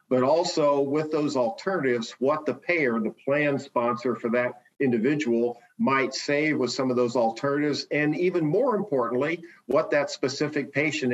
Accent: American